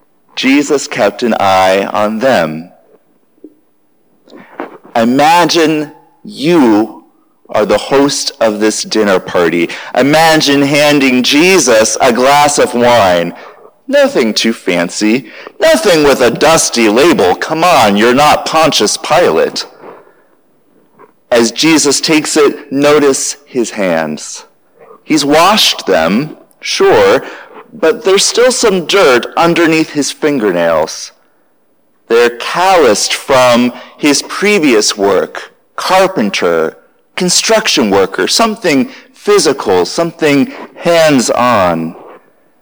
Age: 40-59